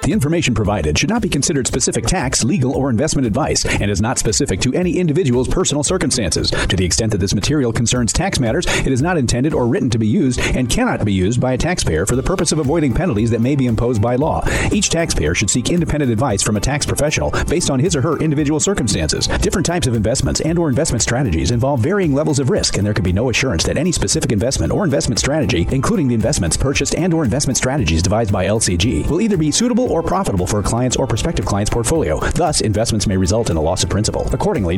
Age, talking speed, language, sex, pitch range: 40-59, 235 wpm, English, male, 105-150 Hz